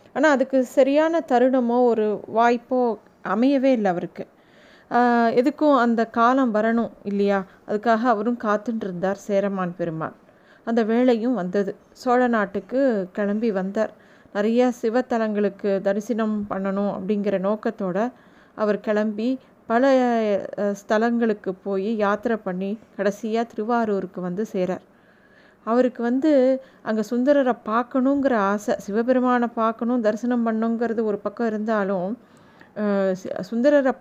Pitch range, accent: 205-245 Hz, native